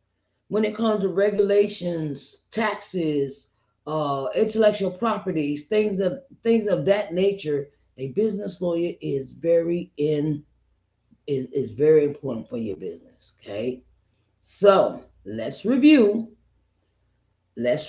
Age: 30-49